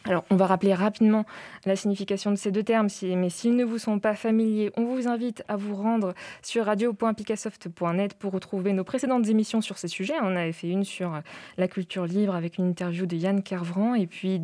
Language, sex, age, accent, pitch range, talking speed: French, female, 20-39, French, 180-215 Hz, 210 wpm